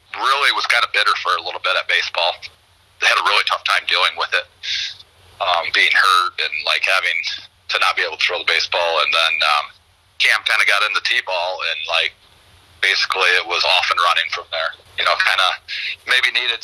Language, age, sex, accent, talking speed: English, 30-49, male, American, 220 wpm